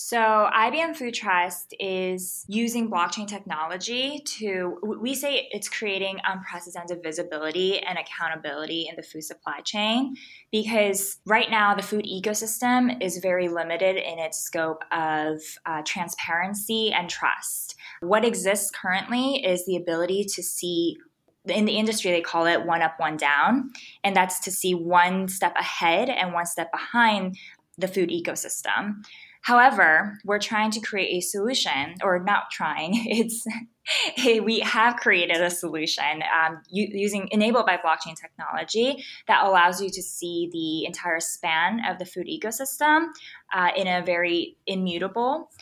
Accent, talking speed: American, 145 wpm